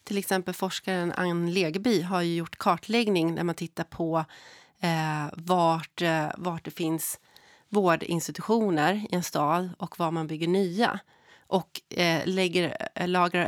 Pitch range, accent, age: 165-205 Hz, Swedish, 30-49